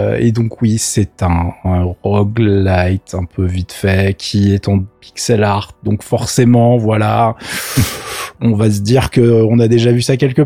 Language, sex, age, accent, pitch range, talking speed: French, male, 20-39, French, 105-125 Hz, 165 wpm